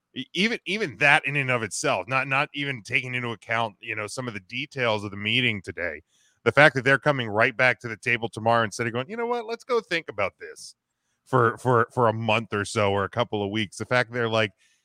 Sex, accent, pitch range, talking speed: male, American, 105-130 Hz, 250 wpm